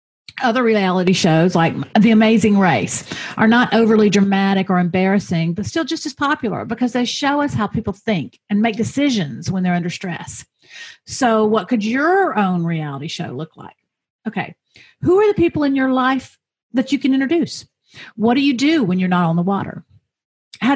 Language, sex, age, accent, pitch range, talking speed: English, female, 50-69, American, 180-245 Hz, 185 wpm